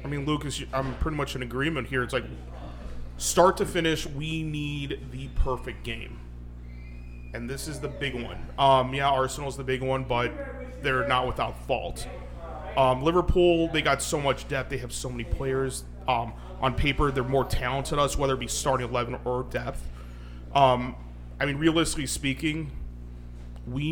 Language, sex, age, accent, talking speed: English, male, 30-49, American, 175 wpm